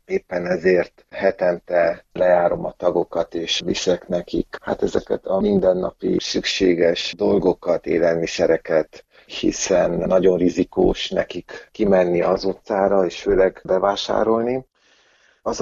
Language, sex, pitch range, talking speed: Hungarian, male, 90-110 Hz, 105 wpm